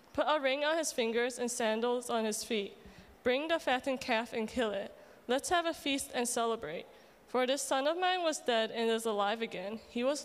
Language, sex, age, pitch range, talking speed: English, female, 20-39, 210-270 Hz, 215 wpm